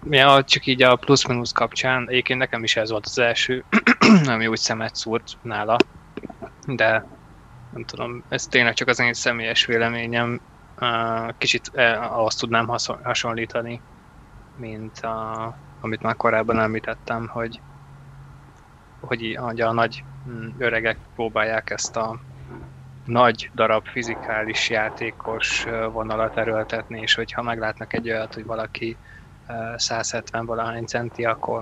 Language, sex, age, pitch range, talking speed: Hungarian, male, 20-39, 110-120 Hz, 120 wpm